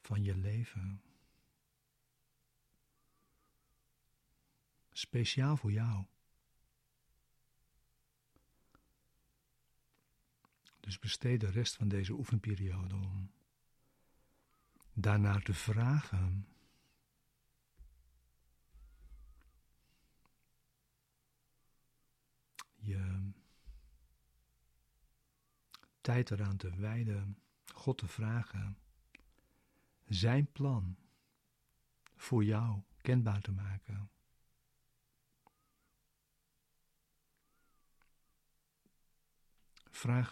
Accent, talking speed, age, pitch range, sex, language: Dutch, 50 wpm, 60-79, 95-125 Hz, male, Dutch